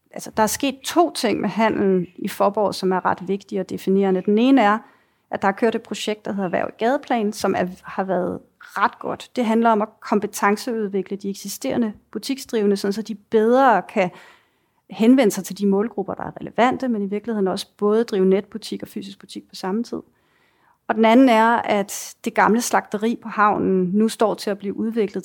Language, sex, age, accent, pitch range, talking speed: Danish, female, 30-49, native, 195-225 Hz, 200 wpm